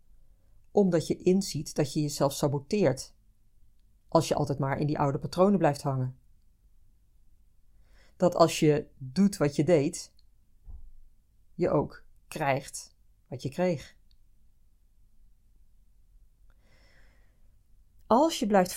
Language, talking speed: Dutch, 105 wpm